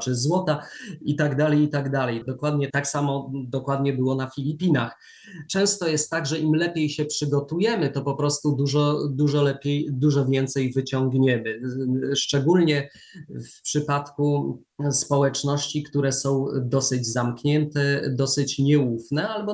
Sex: male